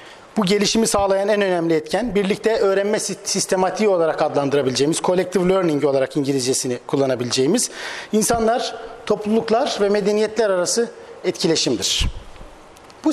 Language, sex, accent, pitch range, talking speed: Turkish, male, native, 185-230 Hz, 105 wpm